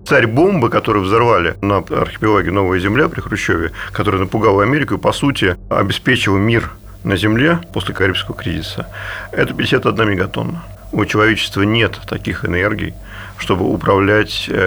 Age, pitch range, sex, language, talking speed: 40-59, 95-110 Hz, male, Russian, 135 wpm